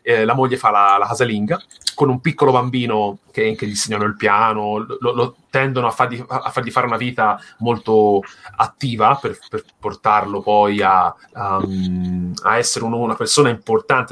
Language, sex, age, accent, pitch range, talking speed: Italian, male, 30-49, native, 110-140 Hz, 175 wpm